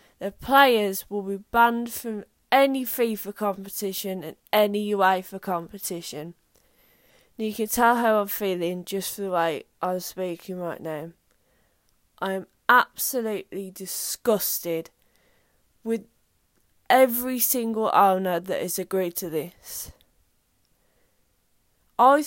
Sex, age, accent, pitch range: female, 20-39, British, 185-235 Hz